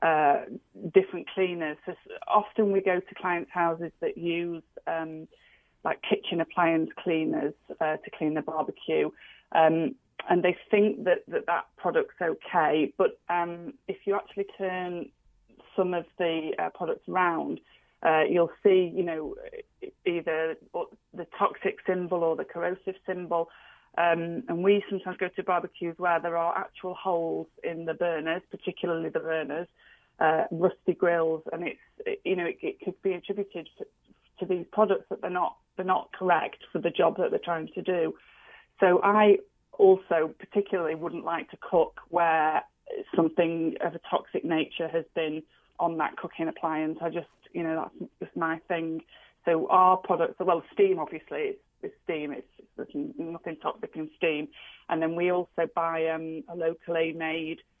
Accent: British